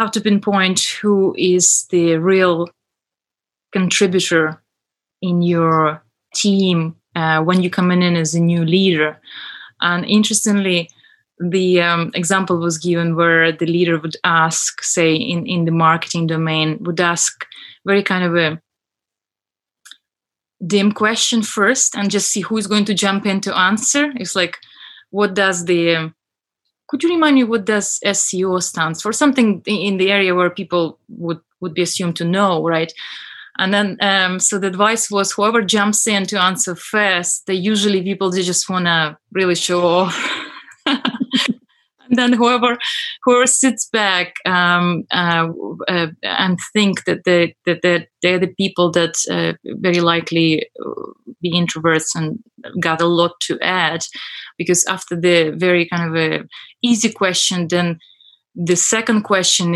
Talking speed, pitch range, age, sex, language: 150 wpm, 170-205 Hz, 20-39, female, English